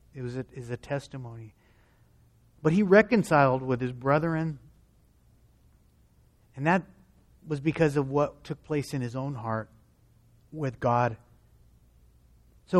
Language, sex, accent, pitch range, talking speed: English, male, American, 125-180 Hz, 125 wpm